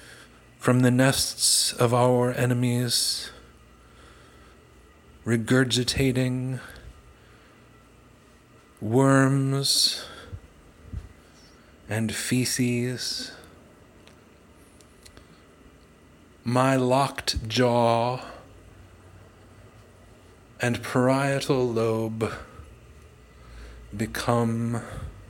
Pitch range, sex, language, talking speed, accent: 100-130 Hz, male, English, 40 wpm, American